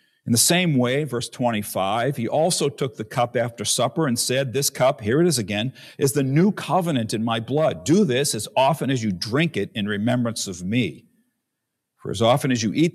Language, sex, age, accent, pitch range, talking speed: English, male, 50-69, American, 105-135 Hz, 215 wpm